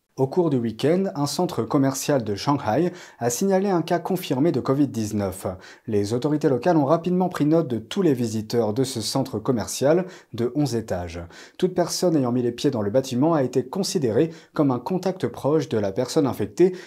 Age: 40-59